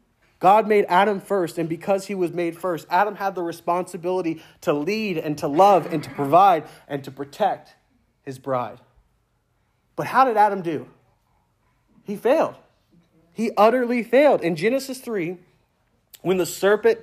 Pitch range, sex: 145-200 Hz, male